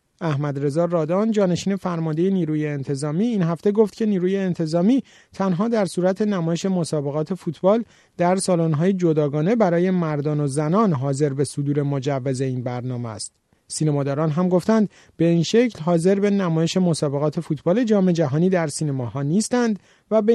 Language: Persian